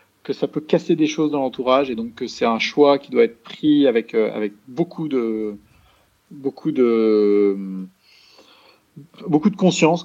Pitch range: 130-195 Hz